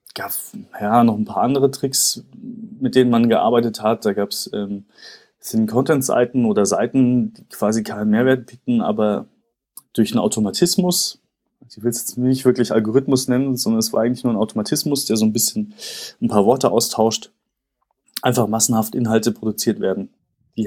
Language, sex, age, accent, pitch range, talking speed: German, male, 30-49, German, 110-135 Hz, 165 wpm